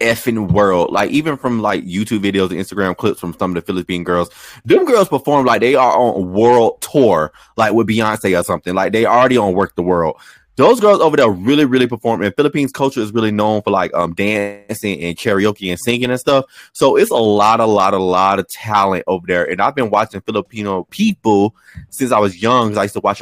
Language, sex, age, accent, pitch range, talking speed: English, male, 20-39, American, 90-120 Hz, 225 wpm